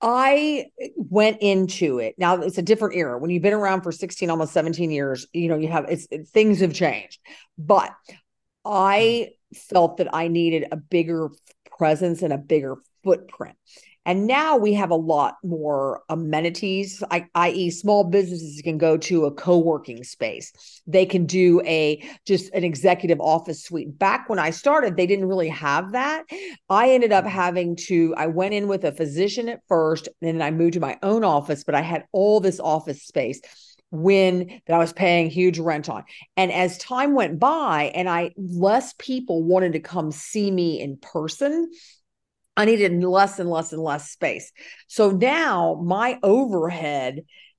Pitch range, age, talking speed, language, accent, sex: 160-200 Hz, 50-69, 175 wpm, English, American, female